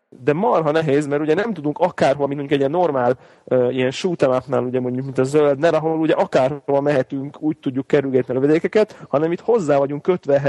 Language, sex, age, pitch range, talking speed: Hungarian, male, 30-49, 130-160 Hz, 205 wpm